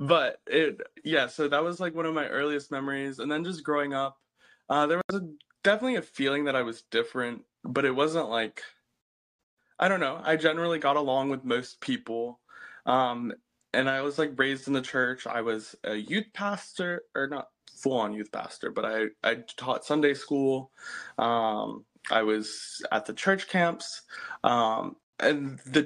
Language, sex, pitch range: English, male, 130-170 Hz